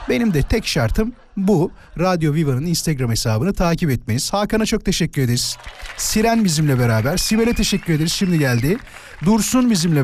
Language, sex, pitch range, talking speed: Turkish, male, 140-205 Hz, 150 wpm